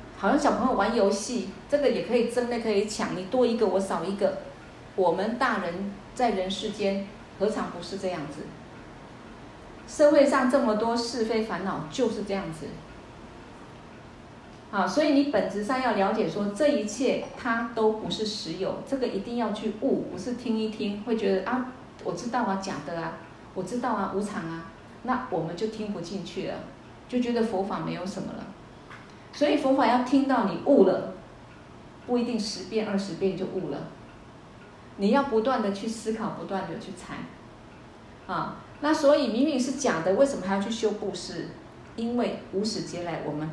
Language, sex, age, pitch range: Chinese, female, 40-59, 185-235 Hz